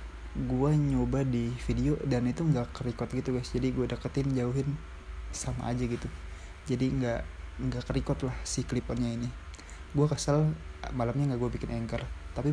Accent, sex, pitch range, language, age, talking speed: native, male, 80-130 Hz, Indonesian, 20-39, 160 wpm